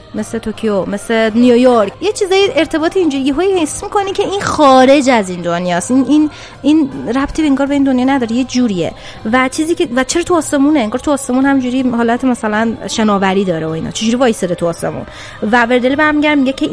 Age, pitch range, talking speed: 30-49, 195-275 Hz, 185 wpm